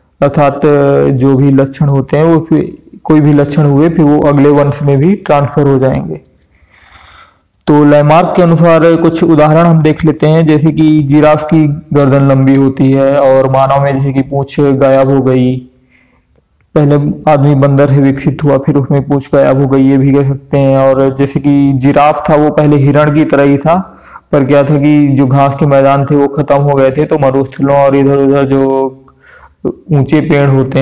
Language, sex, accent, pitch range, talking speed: Hindi, male, native, 135-150 Hz, 195 wpm